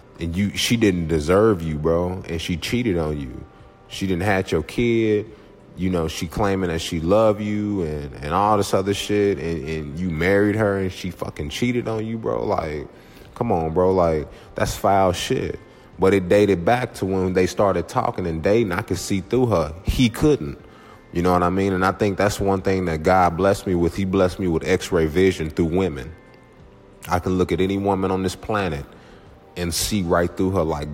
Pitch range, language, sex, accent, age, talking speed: 85-100 Hz, English, male, American, 30-49, 210 wpm